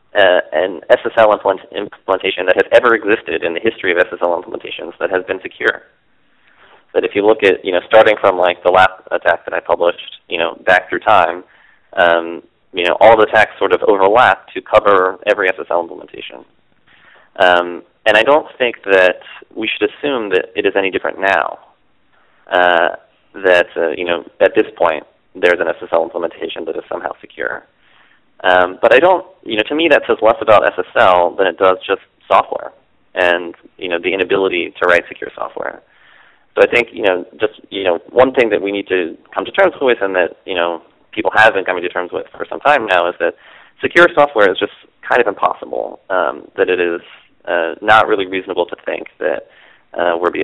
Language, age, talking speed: English, 30-49, 195 wpm